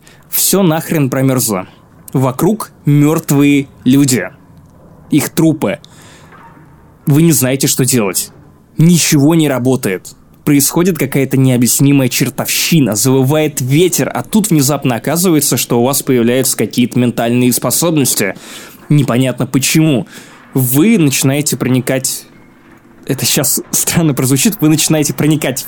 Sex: male